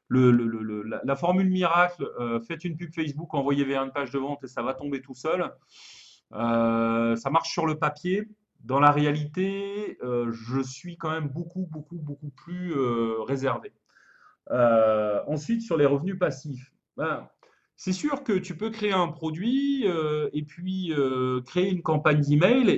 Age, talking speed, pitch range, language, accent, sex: 30-49, 165 wpm, 135-180 Hz, French, French, male